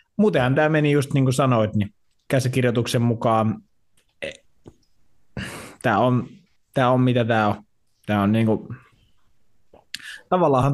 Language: Finnish